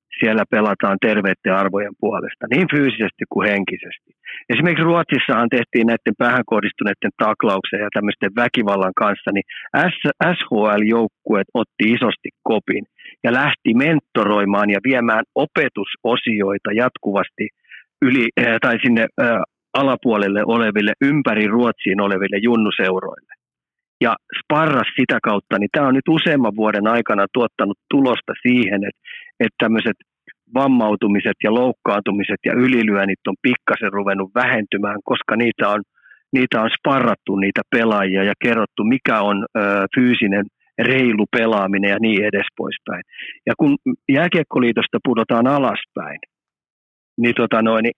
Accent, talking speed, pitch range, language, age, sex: native, 115 wpm, 100-125 Hz, Finnish, 50-69, male